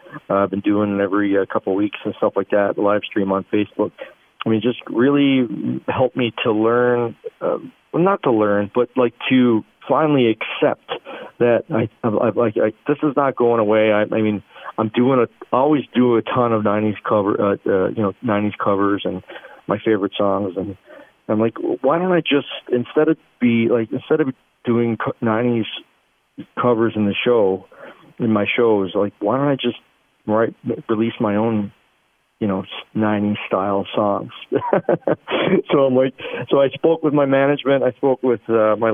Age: 40-59